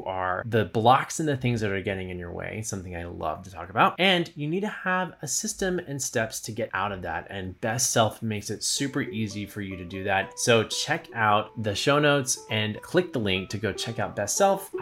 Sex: male